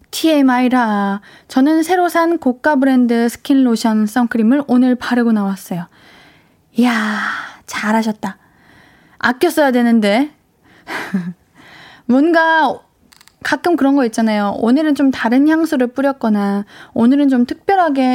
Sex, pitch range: female, 225-290 Hz